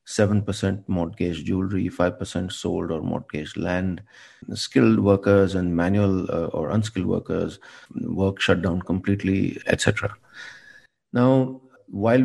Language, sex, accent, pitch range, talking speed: English, male, Indian, 90-105 Hz, 115 wpm